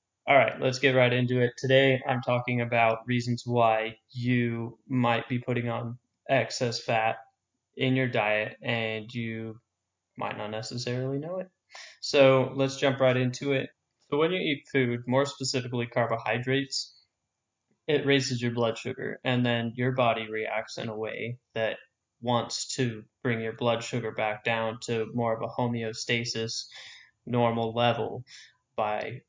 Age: 10-29